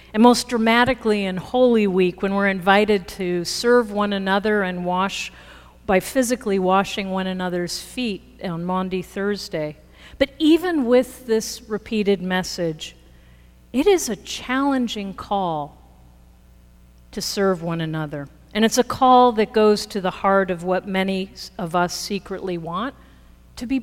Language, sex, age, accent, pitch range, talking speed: English, female, 50-69, American, 170-225 Hz, 145 wpm